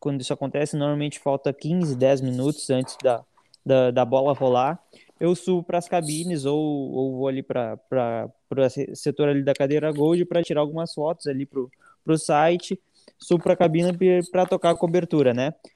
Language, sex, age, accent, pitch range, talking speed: Portuguese, male, 20-39, Brazilian, 140-170 Hz, 180 wpm